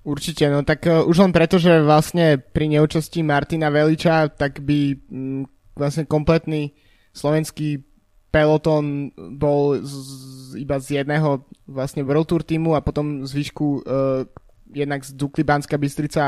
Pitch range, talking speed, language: 145-160 Hz, 135 wpm, Slovak